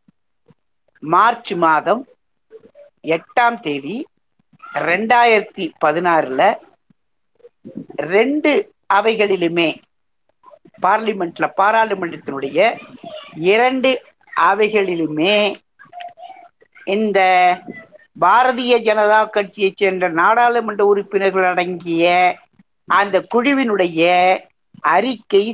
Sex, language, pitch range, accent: female, Tamil, 180-240 Hz, native